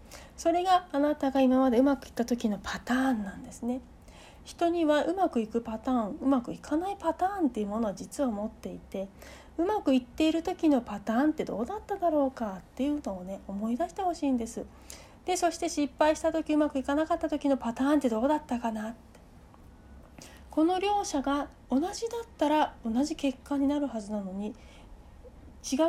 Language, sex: Japanese, female